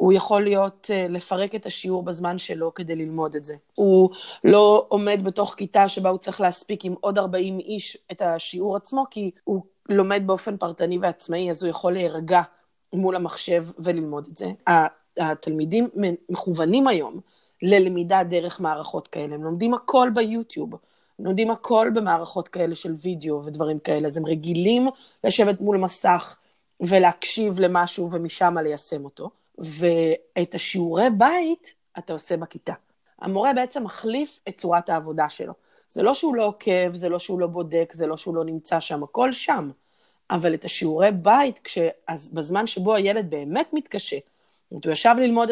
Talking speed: 160 wpm